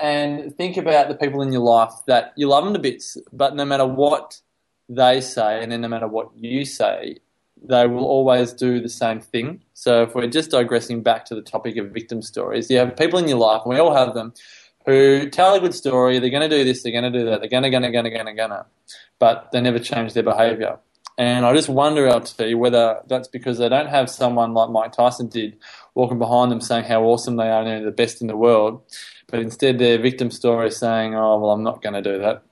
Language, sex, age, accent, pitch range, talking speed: English, male, 20-39, Australian, 115-140 Hz, 255 wpm